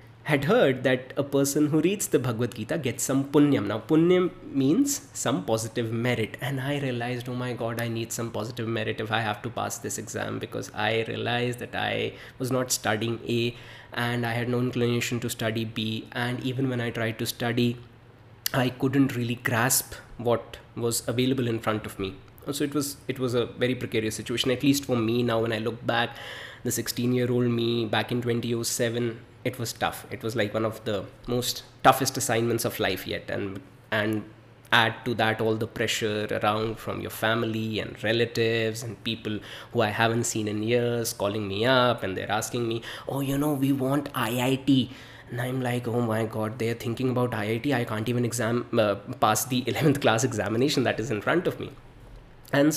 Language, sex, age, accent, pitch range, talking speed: English, male, 20-39, Indian, 110-125 Hz, 195 wpm